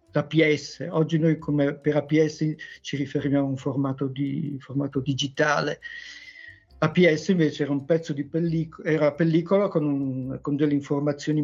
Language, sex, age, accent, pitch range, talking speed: Italian, male, 50-69, native, 145-165 Hz, 140 wpm